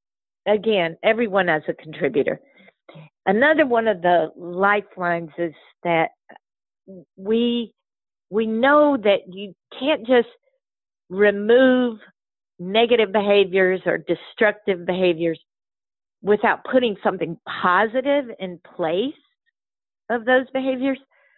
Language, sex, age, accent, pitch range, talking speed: English, female, 50-69, American, 185-240 Hz, 95 wpm